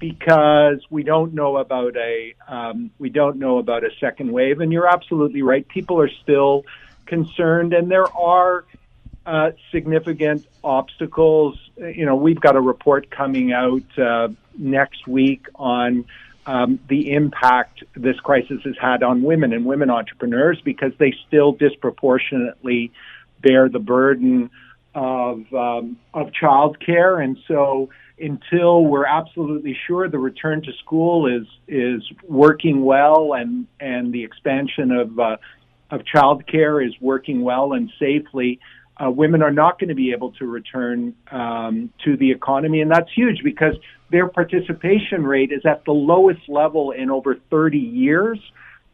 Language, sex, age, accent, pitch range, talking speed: English, male, 50-69, American, 130-160 Hz, 150 wpm